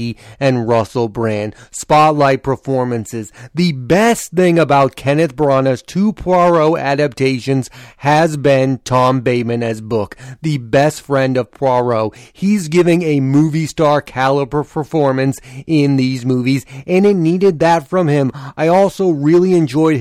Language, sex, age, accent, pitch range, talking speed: English, male, 30-49, American, 130-165 Hz, 135 wpm